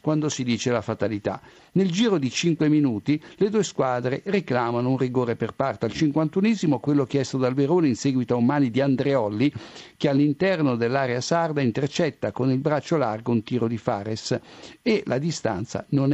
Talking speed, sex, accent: 180 wpm, male, native